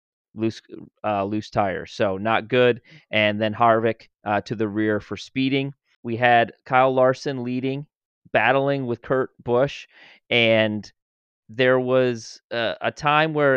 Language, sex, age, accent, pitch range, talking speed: English, male, 30-49, American, 110-130 Hz, 140 wpm